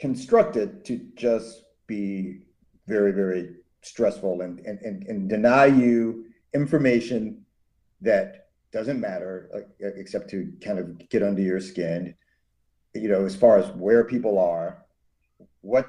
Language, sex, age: English, male, 50-69